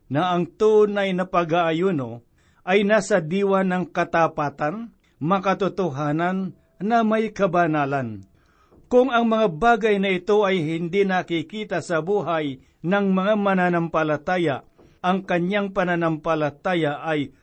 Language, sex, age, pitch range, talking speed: Filipino, male, 50-69, 165-200 Hz, 110 wpm